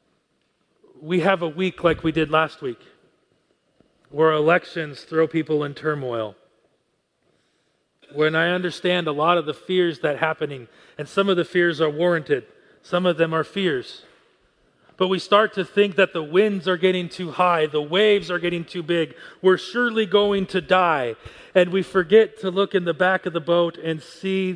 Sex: male